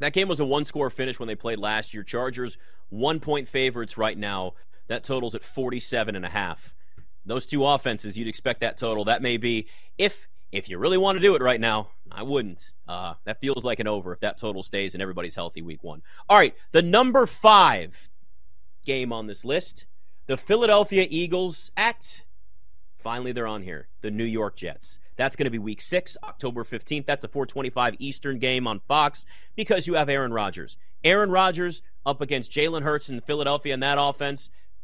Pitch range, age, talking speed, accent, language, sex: 100-150 Hz, 30-49, 190 wpm, American, English, male